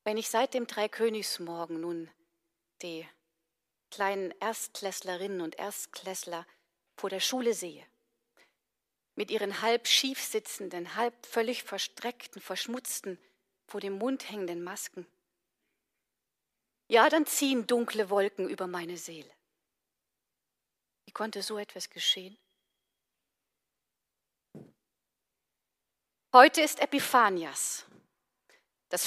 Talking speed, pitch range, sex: 95 wpm, 195-260 Hz, female